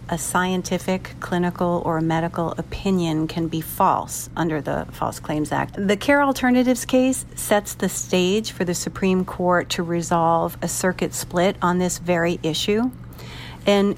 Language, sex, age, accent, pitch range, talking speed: English, female, 50-69, American, 175-215 Hz, 150 wpm